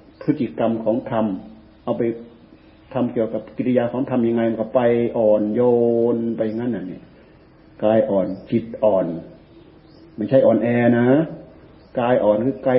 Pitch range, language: 105-120 Hz, Thai